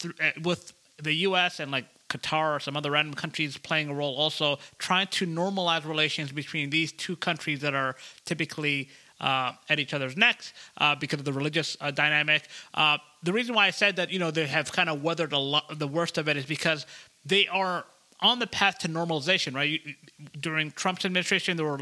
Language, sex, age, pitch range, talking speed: English, male, 30-49, 150-180 Hz, 200 wpm